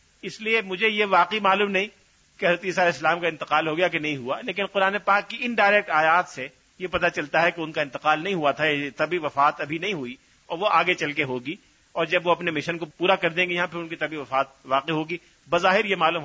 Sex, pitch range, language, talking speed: male, 155-195 Hz, Urdu, 250 wpm